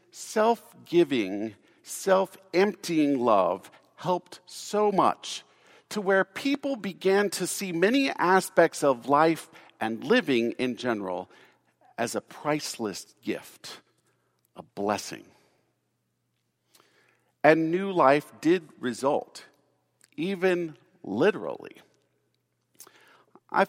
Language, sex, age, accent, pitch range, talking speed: English, male, 50-69, American, 135-190 Hz, 85 wpm